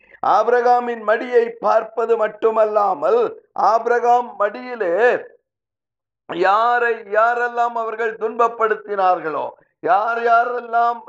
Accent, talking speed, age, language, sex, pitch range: native, 65 wpm, 50-69, Tamil, male, 220-250 Hz